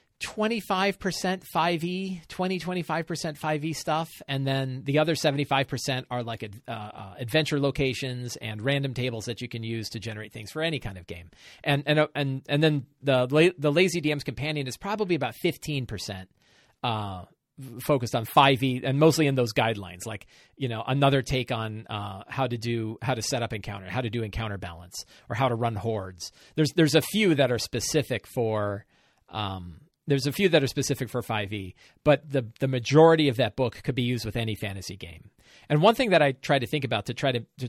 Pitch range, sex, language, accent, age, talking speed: 110-145 Hz, male, English, American, 40-59, 210 wpm